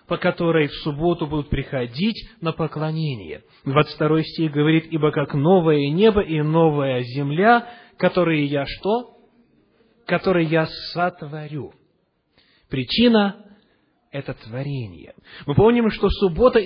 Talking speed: 110 wpm